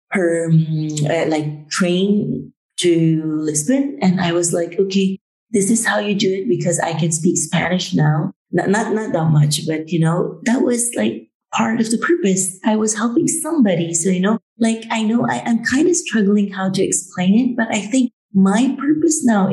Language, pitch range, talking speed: English, 175-225 Hz, 195 wpm